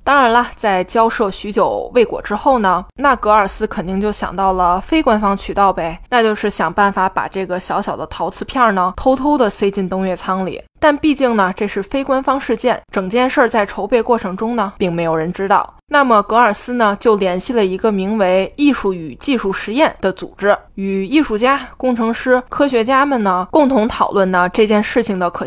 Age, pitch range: 20-39, 190-245 Hz